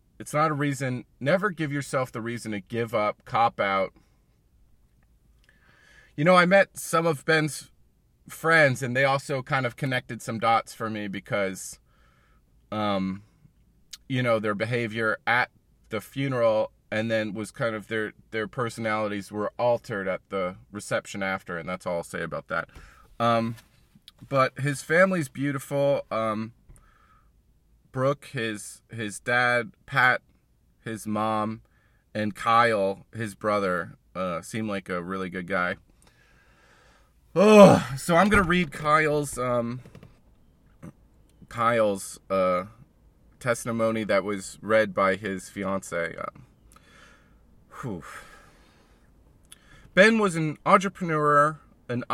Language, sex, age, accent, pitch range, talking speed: English, male, 30-49, American, 105-140 Hz, 125 wpm